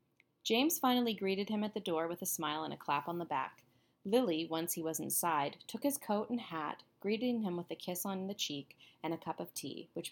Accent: American